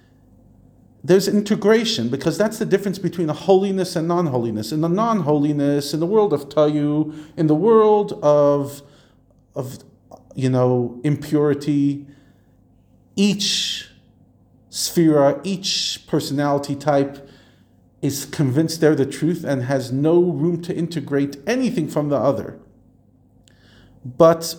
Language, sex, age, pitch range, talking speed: English, male, 40-59, 140-210 Hz, 115 wpm